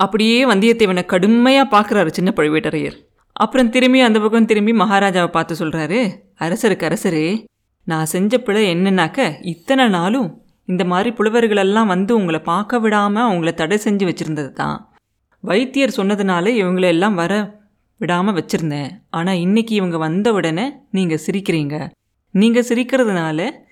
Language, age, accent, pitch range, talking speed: Tamil, 30-49, native, 165-220 Hz, 120 wpm